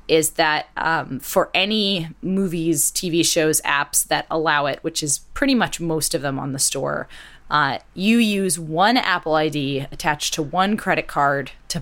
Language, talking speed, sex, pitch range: English, 175 wpm, female, 145-180 Hz